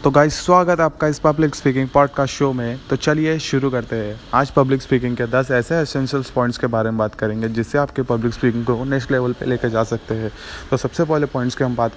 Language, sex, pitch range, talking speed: Hindi, male, 120-140 Hz, 240 wpm